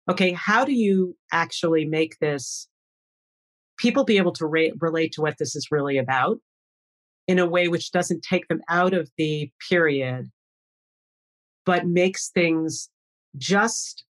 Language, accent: English, American